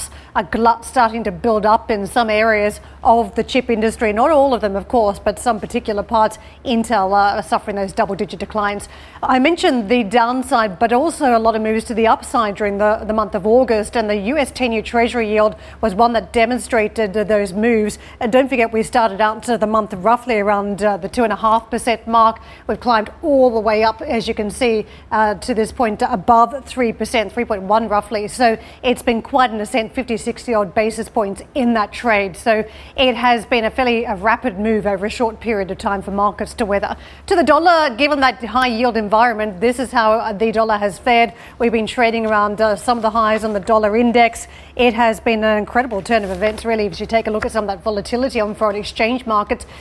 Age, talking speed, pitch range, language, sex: 40-59, 220 wpm, 215-240 Hz, English, female